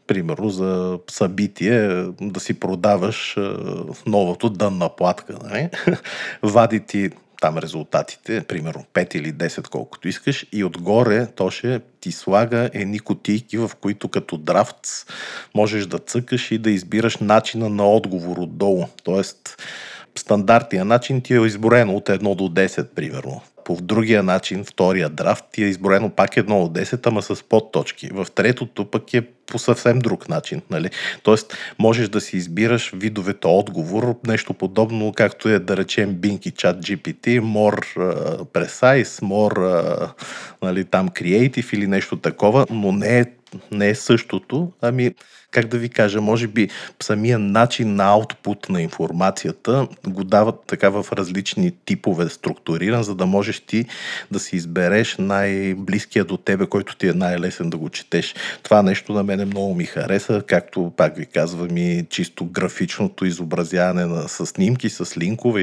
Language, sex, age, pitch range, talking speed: Bulgarian, male, 40-59, 95-115 Hz, 155 wpm